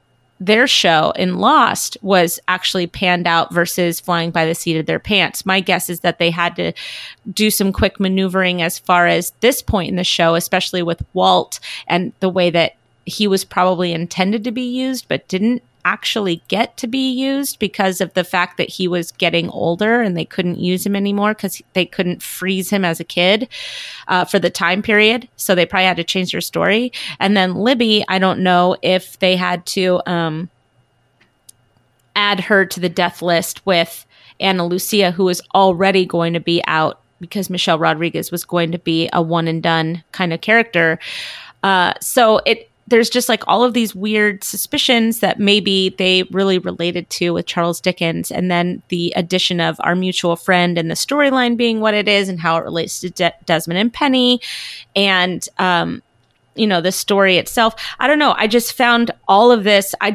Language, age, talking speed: English, 30-49, 195 wpm